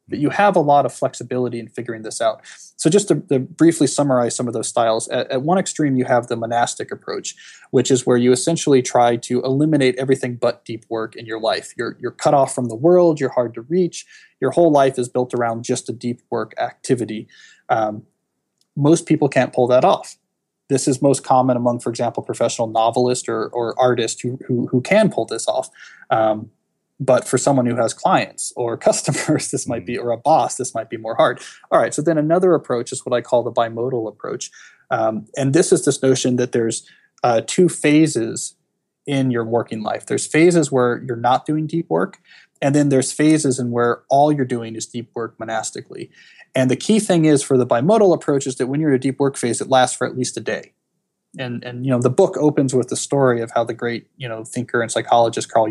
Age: 20-39